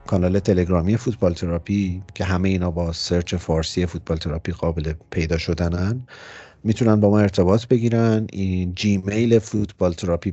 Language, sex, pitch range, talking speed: Persian, male, 90-110 Hz, 135 wpm